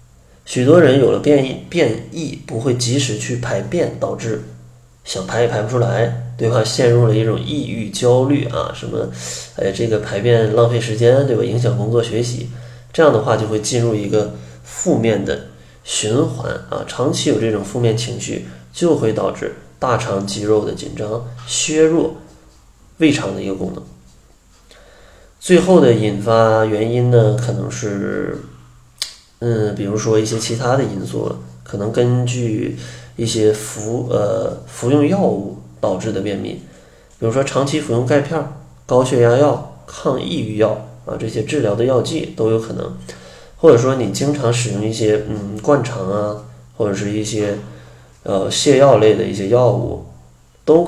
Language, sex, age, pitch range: Chinese, male, 30-49, 100-125 Hz